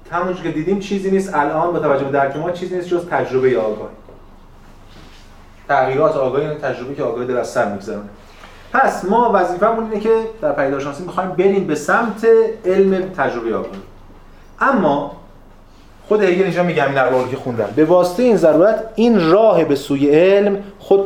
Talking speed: 160 wpm